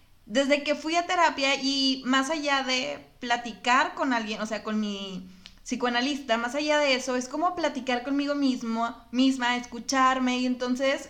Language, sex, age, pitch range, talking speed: Spanish, female, 20-39, 225-270 Hz, 160 wpm